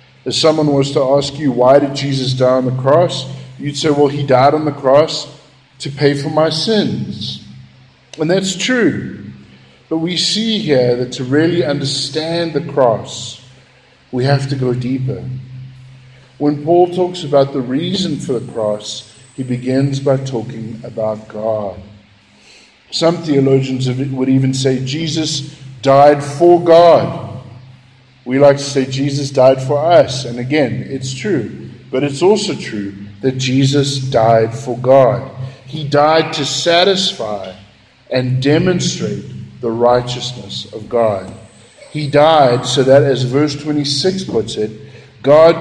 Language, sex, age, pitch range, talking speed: English, male, 50-69, 125-155 Hz, 145 wpm